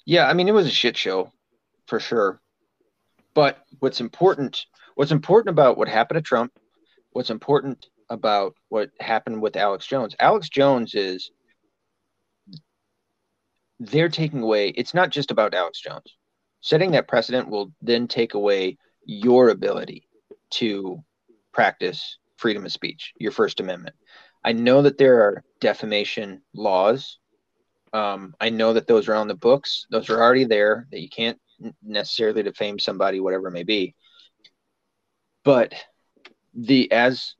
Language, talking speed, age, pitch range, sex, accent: English, 145 wpm, 30-49, 110-145 Hz, male, American